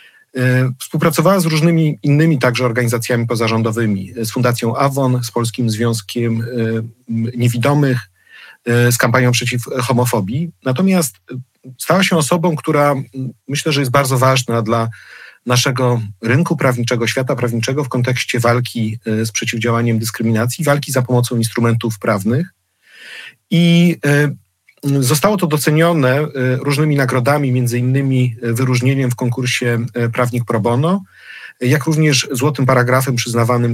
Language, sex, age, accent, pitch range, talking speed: Polish, male, 40-59, native, 120-145 Hz, 115 wpm